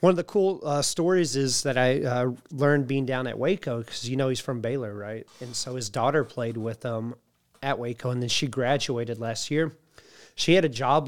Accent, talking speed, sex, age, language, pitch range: American, 220 wpm, male, 30-49, English, 120-150 Hz